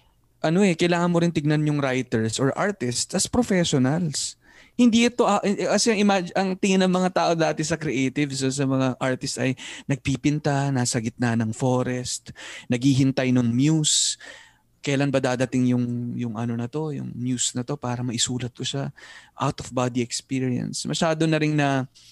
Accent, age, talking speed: native, 20-39, 165 wpm